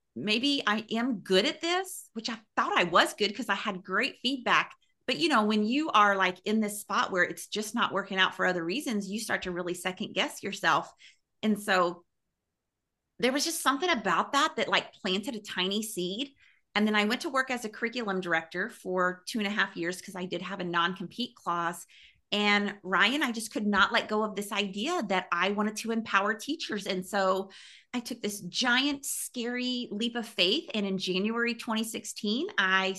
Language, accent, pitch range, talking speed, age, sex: English, American, 195-245 Hz, 200 wpm, 30-49, female